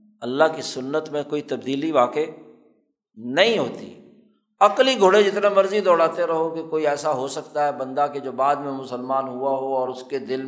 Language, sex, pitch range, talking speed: Urdu, male, 145-195 Hz, 190 wpm